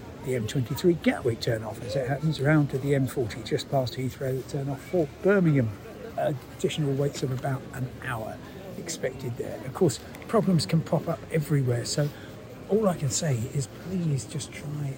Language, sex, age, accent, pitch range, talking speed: English, male, 60-79, British, 125-150 Hz, 170 wpm